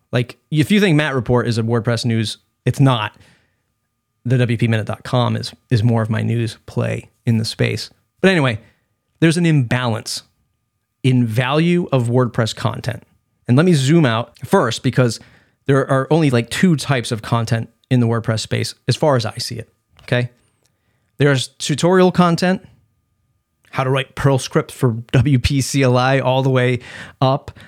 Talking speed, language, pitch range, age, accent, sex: 165 wpm, English, 115-140 Hz, 30-49, American, male